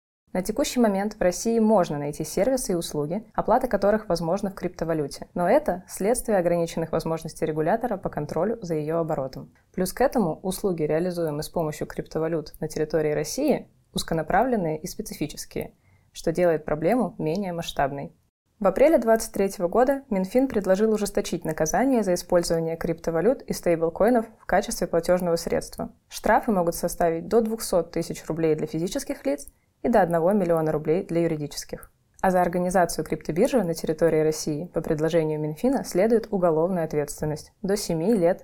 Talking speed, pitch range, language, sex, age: 150 wpm, 160-205 Hz, Russian, female, 20-39